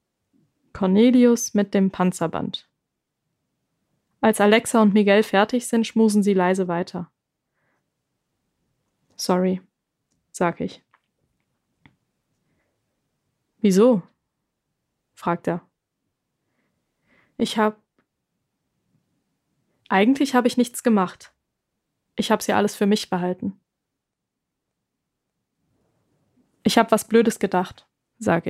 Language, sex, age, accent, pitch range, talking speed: German, female, 20-39, German, 195-235 Hz, 85 wpm